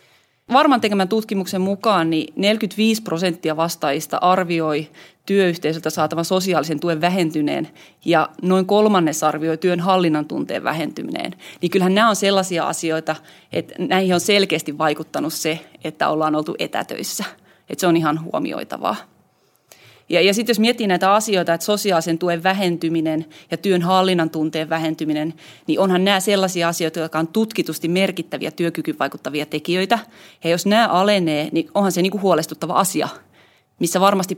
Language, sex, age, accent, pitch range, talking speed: Finnish, female, 30-49, native, 160-195 Hz, 140 wpm